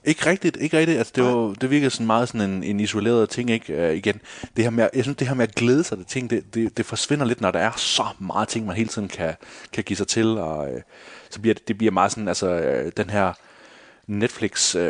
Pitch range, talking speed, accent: 95-115 Hz, 260 wpm, native